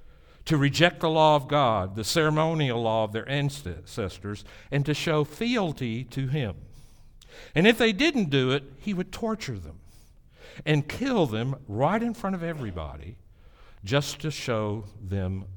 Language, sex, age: English, male, 60-79